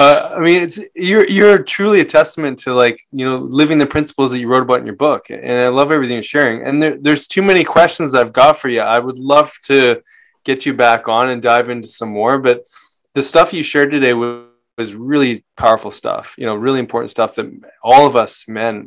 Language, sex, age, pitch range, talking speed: English, male, 20-39, 115-145 Hz, 230 wpm